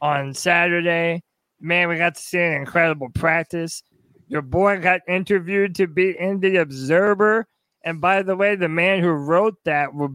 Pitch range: 165-215 Hz